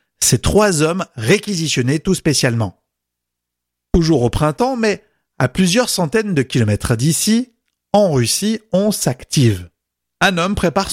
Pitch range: 120-170 Hz